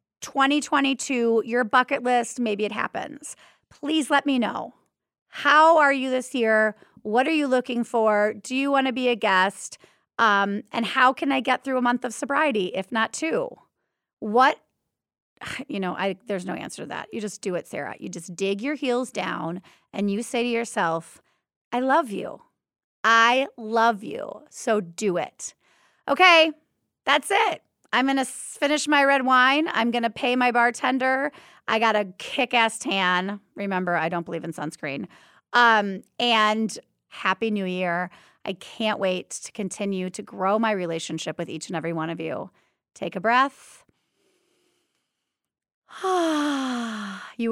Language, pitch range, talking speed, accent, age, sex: English, 200-265 Hz, 160 wpm, American, 30-49, female